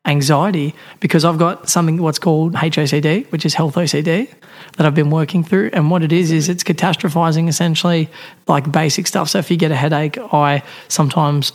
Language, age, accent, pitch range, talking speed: English, 30-49, Australian, 150-170 Hz, 185 wpm